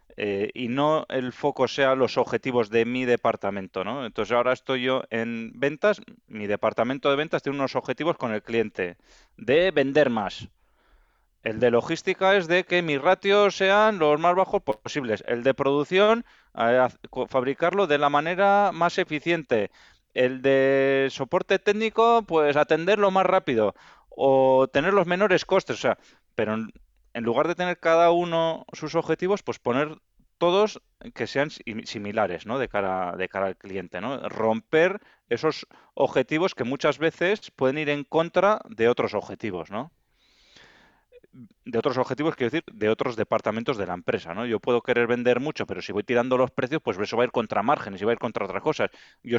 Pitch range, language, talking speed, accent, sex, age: 115-165 Hz, Spanish, 175 wpm, Spanish, male, 20-39